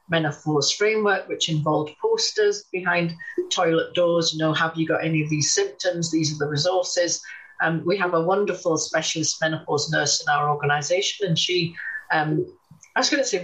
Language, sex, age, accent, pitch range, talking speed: English, female, 40-59, British, 155-195 Hz, 180 wpm